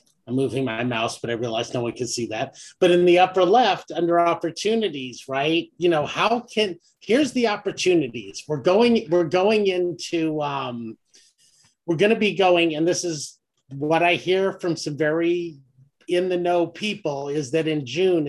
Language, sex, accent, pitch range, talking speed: English, male, American, 150-190 Hz, 175 wpm